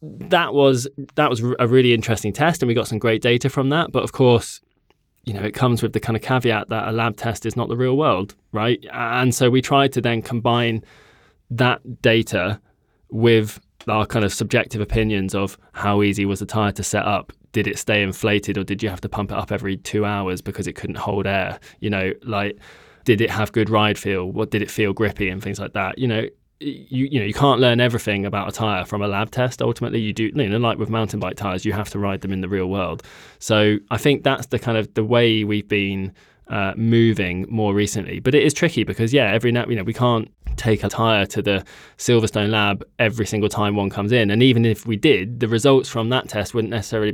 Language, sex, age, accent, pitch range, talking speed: English, male, 20-39, British, 100-120 Hz, 240 wpm